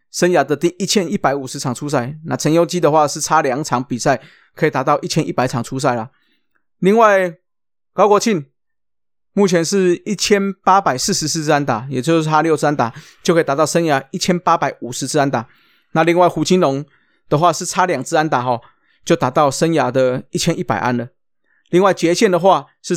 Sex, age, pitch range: male, 20-39, 135-180 Hz